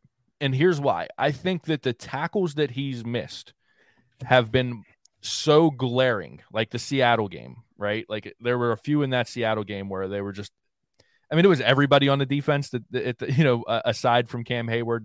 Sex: male